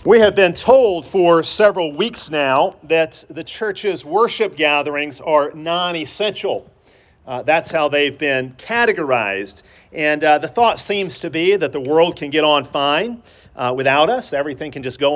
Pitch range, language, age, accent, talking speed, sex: 145-195 Hz, English, 40-59, American, 160 wpm, male